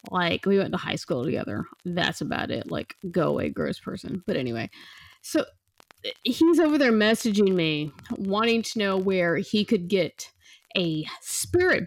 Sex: female